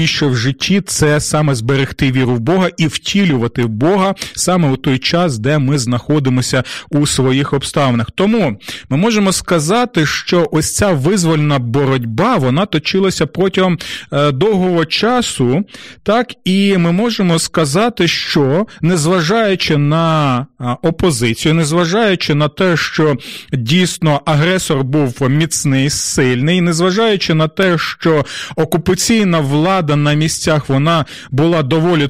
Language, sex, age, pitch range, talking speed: Ukrainian, male, 30-49, 145-185 Hz, 125 wpm